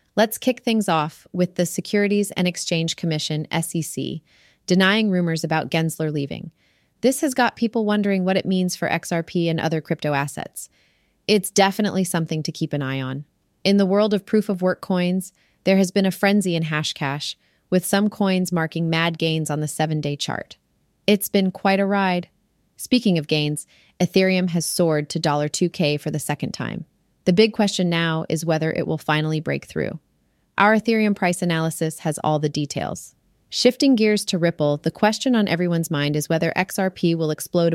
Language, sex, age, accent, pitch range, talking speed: English, female, 30-49, American, 155-190 Hz, 180 wpm